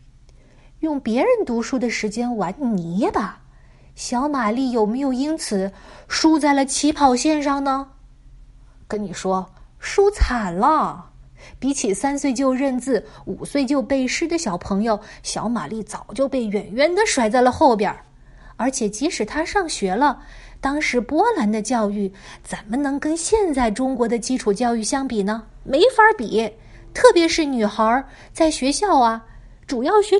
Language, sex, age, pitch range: Chinese, female, 20-39, 210-290 Hz